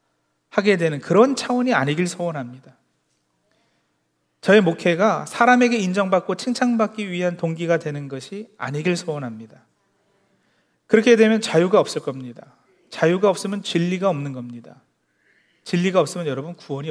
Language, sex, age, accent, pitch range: Korean, male, 40-59, native, 140-205 Hz